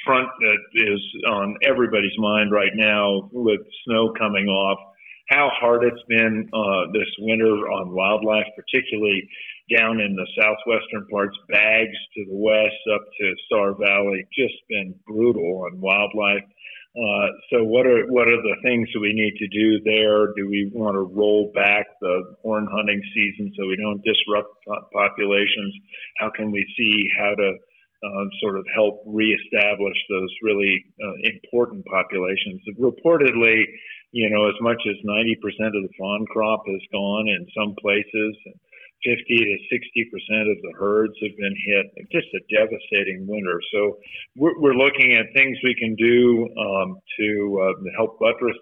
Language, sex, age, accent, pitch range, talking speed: English, male, 50-69, American, 100-110 Hz, 160 wpm